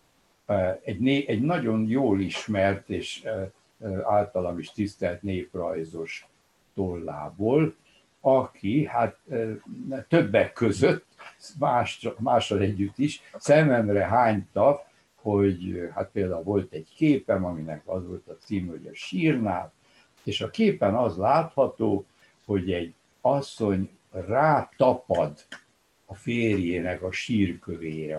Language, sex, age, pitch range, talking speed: Hungarian, male, 60-79, 90-120 Hz, 100 wpm